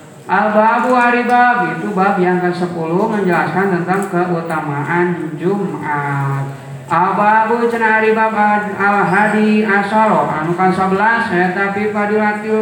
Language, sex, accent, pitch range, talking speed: Indonesian, male, native, 180-220 Hz, 110 wpm